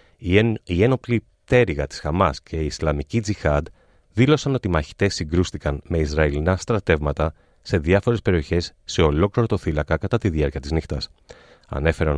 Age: 30-49